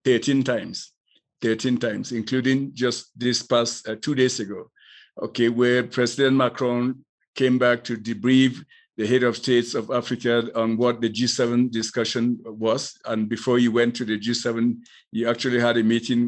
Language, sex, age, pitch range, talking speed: English, male, 50-69, 115-130 Hz, 160 wpm